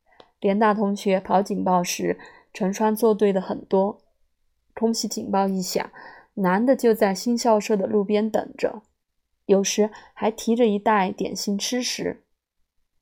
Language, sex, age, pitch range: Chinese, female, 20-39, 195-230 Hz